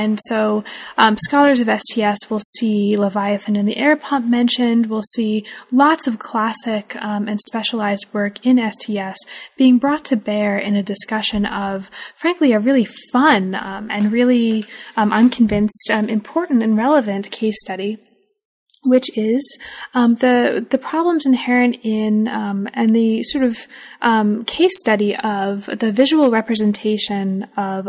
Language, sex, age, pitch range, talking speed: English, female, 10-29, 205-245 Hz, 150 wpm